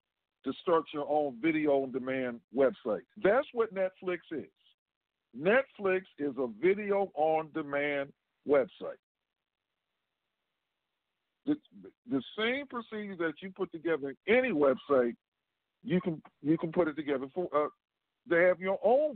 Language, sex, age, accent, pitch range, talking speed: English, male, 50-69, American, 135-190 Hz, 135 wpm